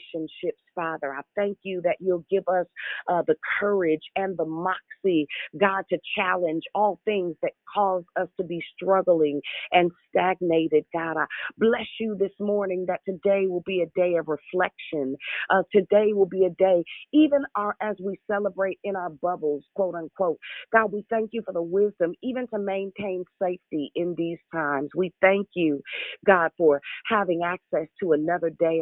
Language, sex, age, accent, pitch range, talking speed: English, female, 40-59, American, 165-200 Hz, 170 wpm